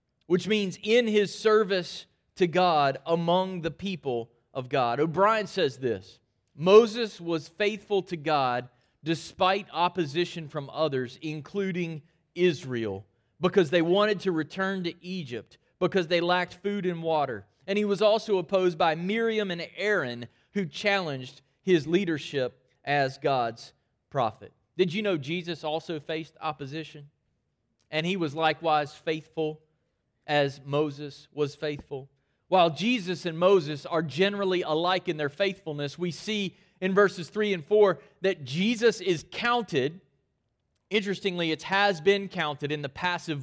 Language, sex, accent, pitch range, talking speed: English, male, American, 145-190 Hz, 140 wpm